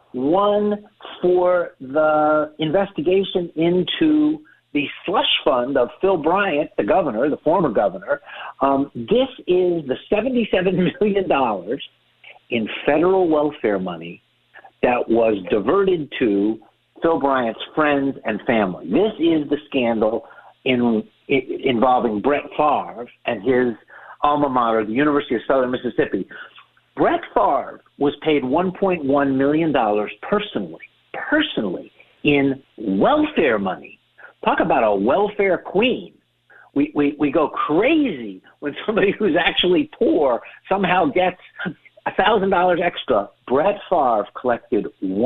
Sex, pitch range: male, 130-190 Hz